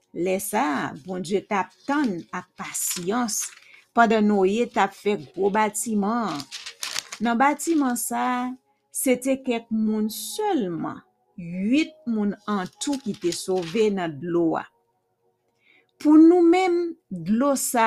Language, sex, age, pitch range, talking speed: English, female, 50-69, 190-240 Hz, 105 wpm